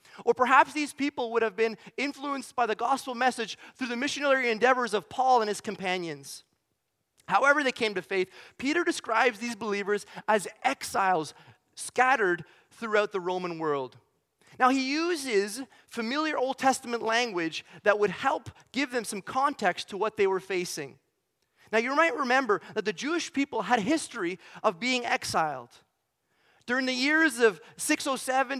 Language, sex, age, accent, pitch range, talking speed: English, male, 30-49, American, 205-265 Hz, 155 wpm